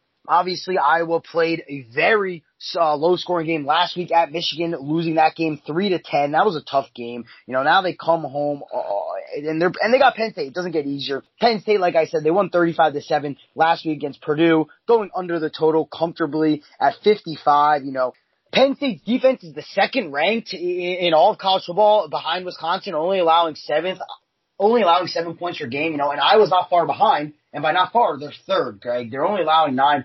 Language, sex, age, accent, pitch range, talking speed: English, male, 20-39, American, 150-195 Hz, 215 wpm